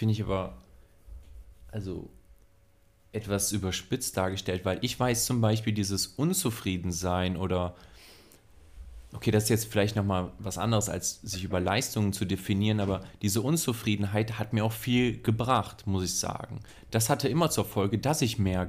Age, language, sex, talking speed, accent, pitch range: 30-49, German, male, 150 wpm, German, 95-110 Hz